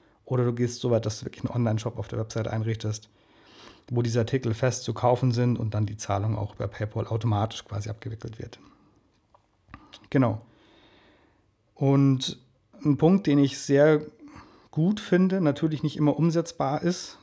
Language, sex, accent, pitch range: German, male, German, 115-140 Hz